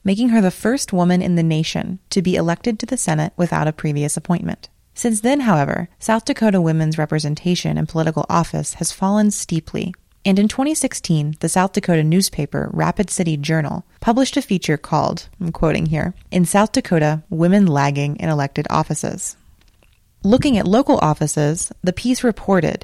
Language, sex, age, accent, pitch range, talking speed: English, female, 30-49, American, 160-215 Hz, 165 wpm